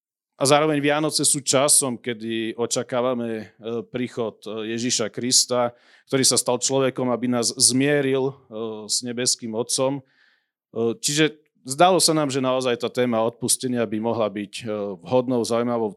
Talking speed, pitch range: 130 wpm, 110-130 Hz